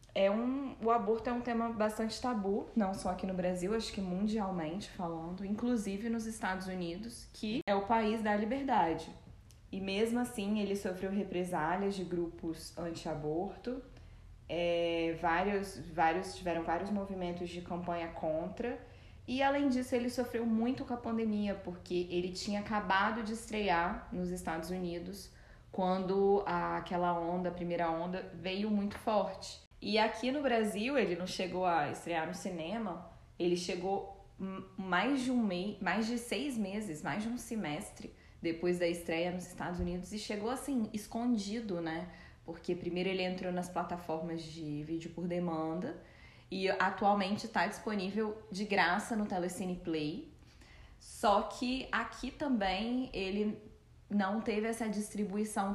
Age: 20-39